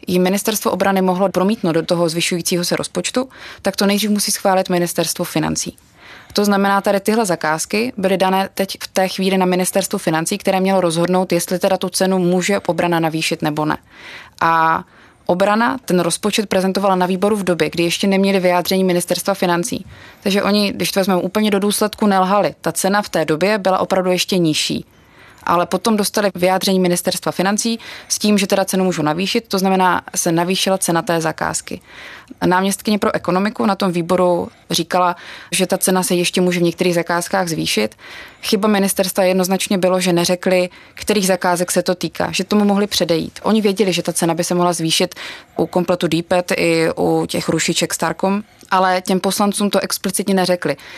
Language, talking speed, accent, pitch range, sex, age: Czech, 180 wpm, native, 175-200 Hz, female, 20-39